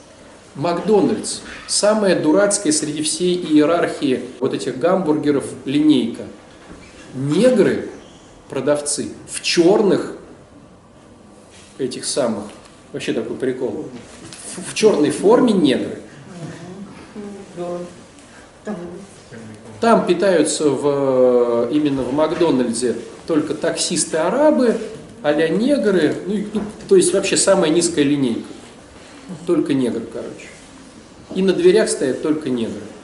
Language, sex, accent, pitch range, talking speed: Russian, male, native, 155-225 Hz, 90 wpm